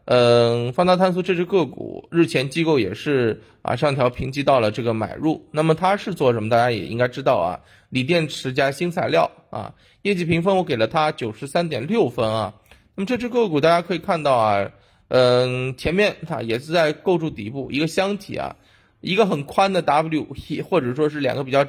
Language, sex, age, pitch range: Chinese, male, 20-39, 115-155 Hz